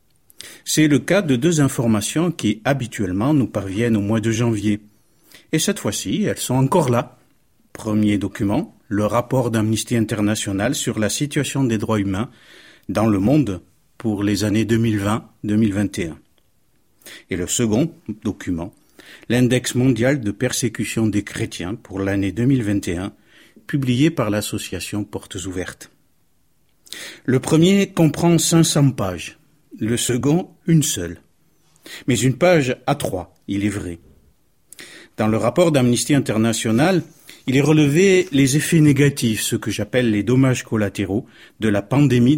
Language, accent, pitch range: French, French, 105-135 Hz